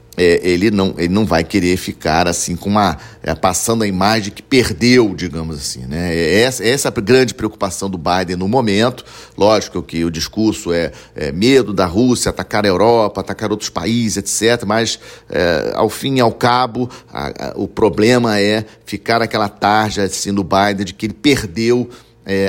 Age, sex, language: 40-59, male, Portuguese